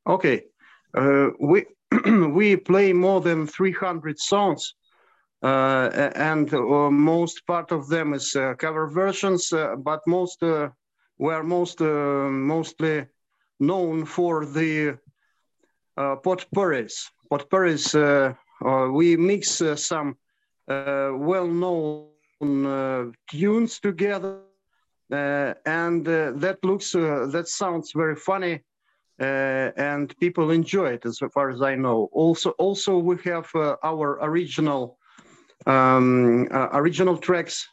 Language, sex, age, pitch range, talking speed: English, male, 50-69, 140-175 Hz, 125 wpm